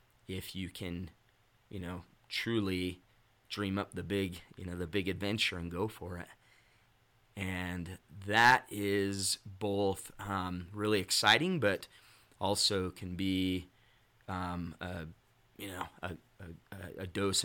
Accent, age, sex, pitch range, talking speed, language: American, 30-49, male, 90-105 Hz, 130 wpm, English